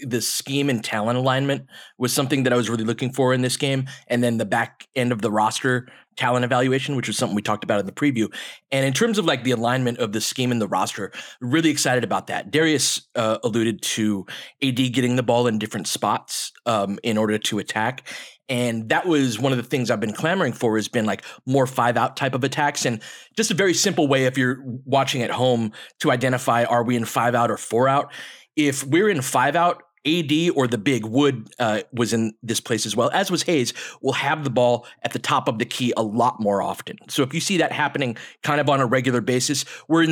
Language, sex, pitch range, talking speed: English, male, 120-140 Hz, 235 wpm